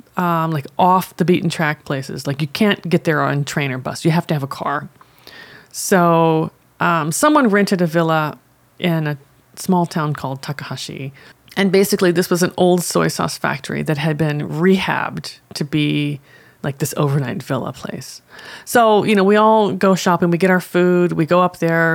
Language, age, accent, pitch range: Japanese, 30-49, American, 150-195 Hz